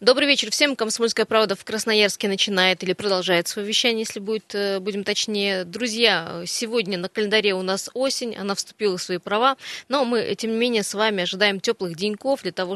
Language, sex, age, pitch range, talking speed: Russian, female, 20-39, 190-230 Hz, 185 wpm